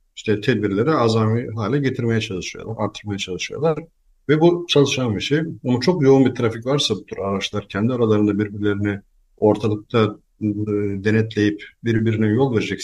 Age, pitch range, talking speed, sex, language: 50-69, 100-130 Hz, 140 wpm, male, Turkish